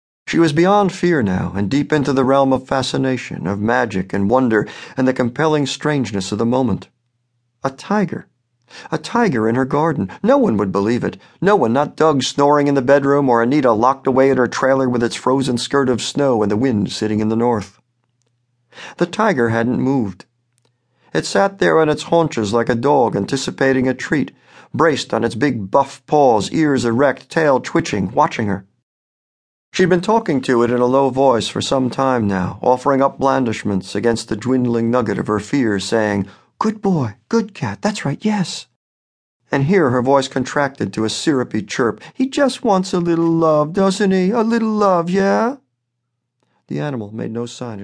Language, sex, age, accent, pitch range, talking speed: English, male, 50-69, American, 115-155 Hz, 185 wpm